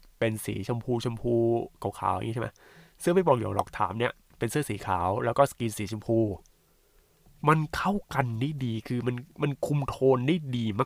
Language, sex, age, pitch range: Thai, male, 20-39, 105-140 Hz